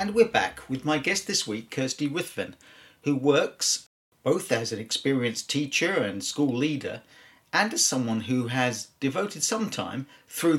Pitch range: 110-145 Hz